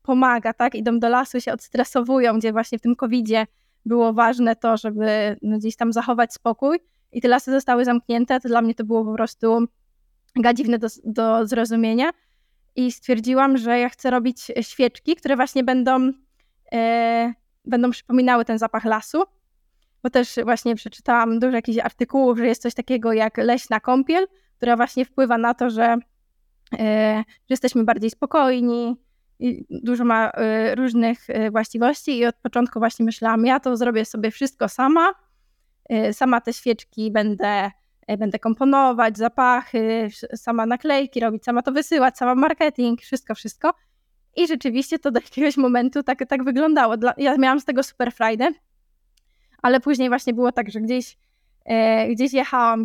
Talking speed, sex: 150 wpm, female